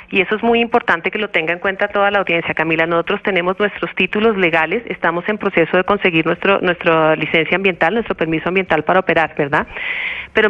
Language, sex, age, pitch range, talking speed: Spanish, female, 40-59, 175-215 Hz, 200 wpm